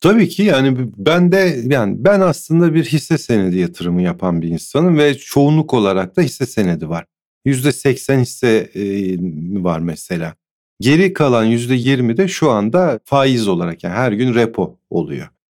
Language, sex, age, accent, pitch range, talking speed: Turkish, male, 50-69, native, 110-160 Hz, 150 wpm